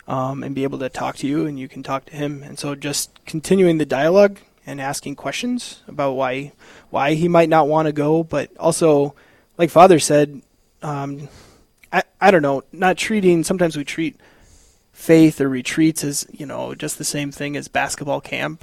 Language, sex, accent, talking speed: English, male, American, 195 wpm